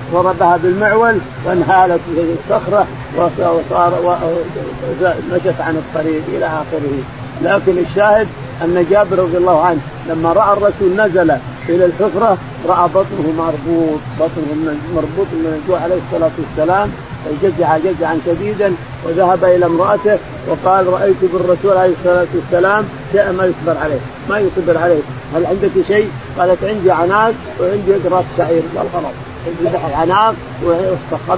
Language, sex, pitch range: Arabic, male, 155-185 Hz